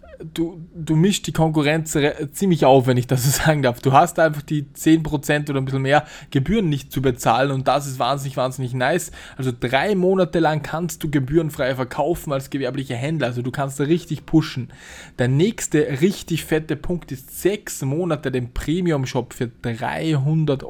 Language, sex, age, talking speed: German, male, 20-39, 175 wpm